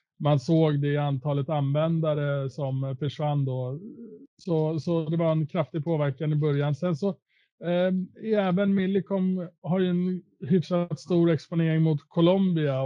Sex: male